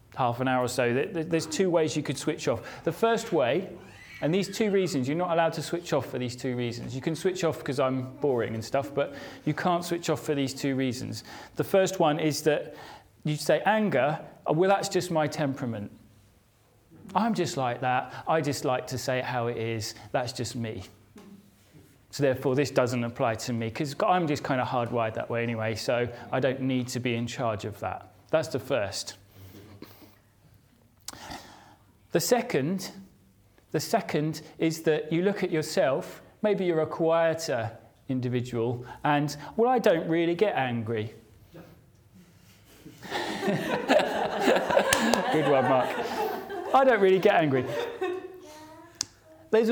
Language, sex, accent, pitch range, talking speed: English, male, British, 115-165 Hz, 165 wpm